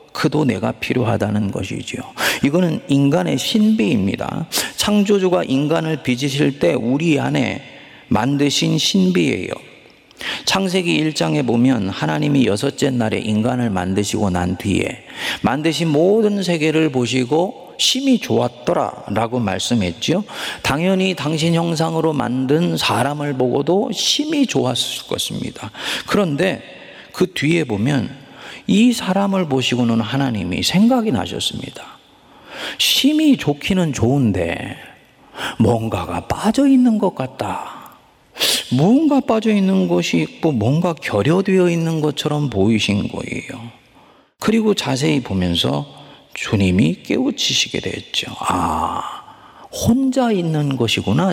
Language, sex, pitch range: Korean, male, 120-190 Hz